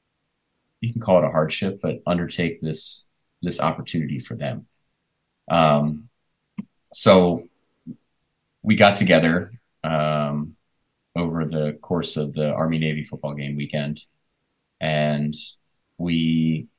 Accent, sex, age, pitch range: American, male, 30-49, 75-85 Hz